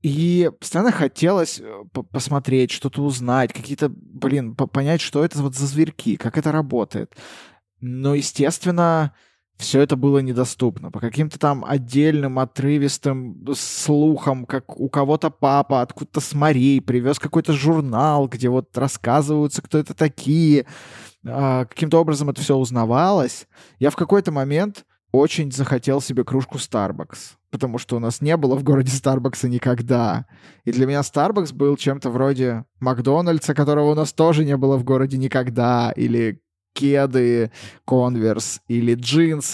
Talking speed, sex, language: 135 wpm, male, Russian